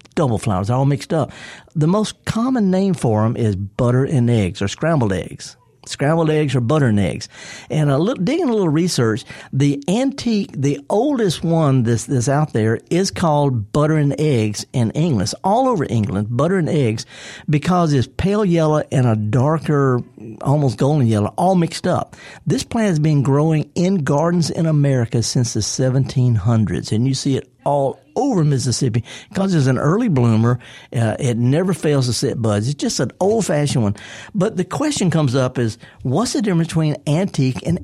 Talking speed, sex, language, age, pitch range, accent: 185 wpm, male, English, 50-69, 125-165 Hz, American